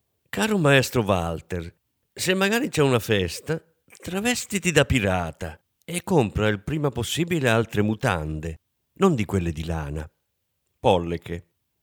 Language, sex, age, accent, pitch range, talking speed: Italian, male, 50-69, native, 95-140 Hz, 120 wpm